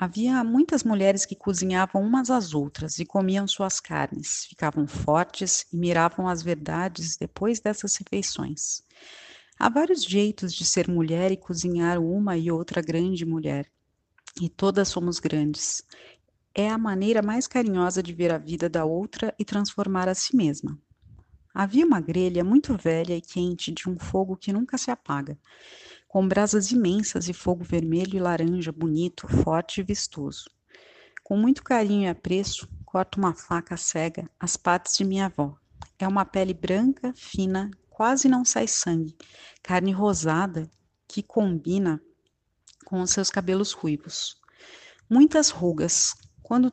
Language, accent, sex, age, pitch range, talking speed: Portuguese, Brazilian, female, 40-59, 165-205 Hz, 150 wpm